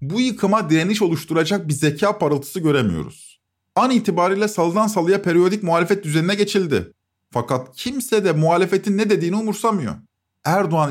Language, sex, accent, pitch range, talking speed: Turkish, male, native, 135-200 Hz, 130 wpm